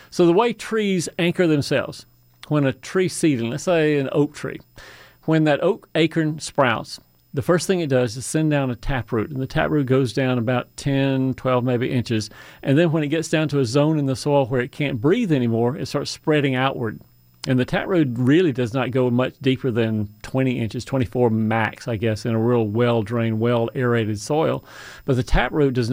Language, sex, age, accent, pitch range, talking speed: English, male, 40-59, American, 120-150 Hz, 200 wpm